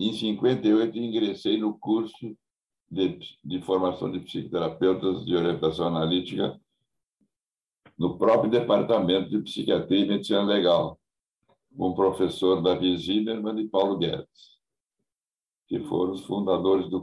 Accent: Brazilian